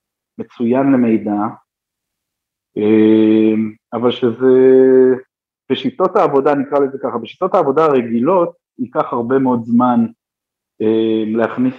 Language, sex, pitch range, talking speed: Hebrew, male, 115-150 Hz, 85 wpm